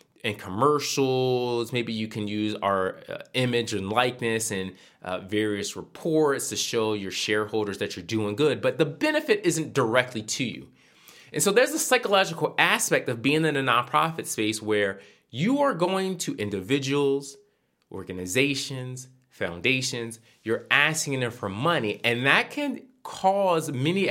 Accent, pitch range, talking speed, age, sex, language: American, 105-145 Hz, 150 wpm, 20-39, male, English